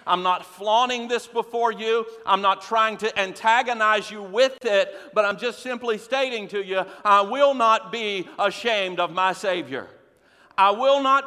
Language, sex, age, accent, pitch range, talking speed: English, male, 50-69, American, 170-235 Hz, 170 wpm